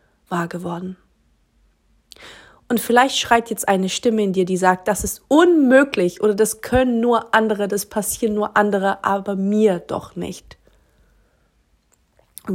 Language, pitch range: German, 185-230 Hz